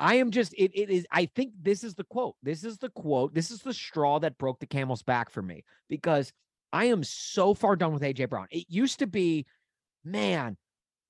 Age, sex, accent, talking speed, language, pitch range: 30-49, male, American, 220 wpm, English, 145-215 Hz